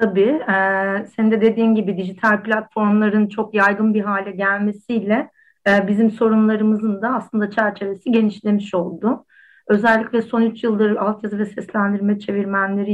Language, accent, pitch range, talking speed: Turkish, native, 185-220 Hz, 135 wpm